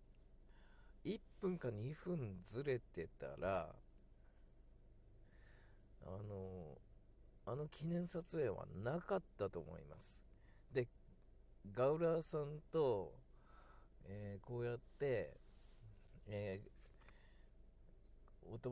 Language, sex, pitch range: Japanese, male, 100-130 Hz